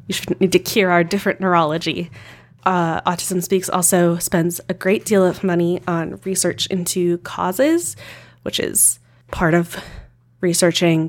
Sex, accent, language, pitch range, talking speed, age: female, American, English, 170-195 Hz, 140 wpm, 20-39